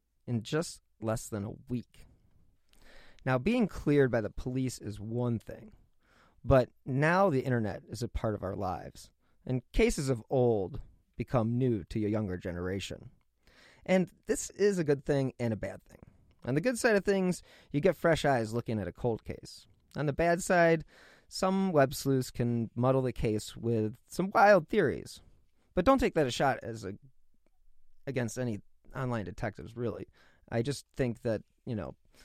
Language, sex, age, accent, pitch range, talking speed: English, male, 30-49, American, 105-140 Hz, 170 wpm